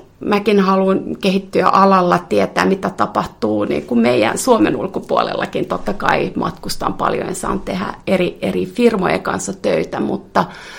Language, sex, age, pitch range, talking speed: Finnish, female, 30-49, 180-230 Hz, 135 wpm